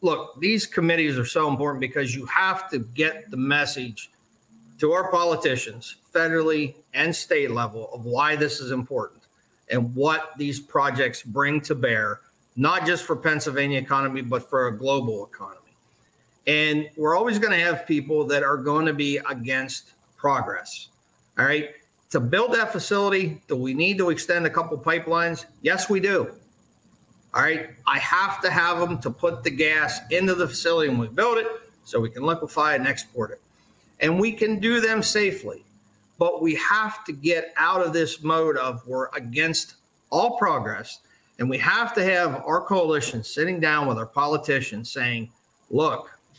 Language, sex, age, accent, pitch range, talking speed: English, male, 50-69, American, 135-180 Hz, 170 wpm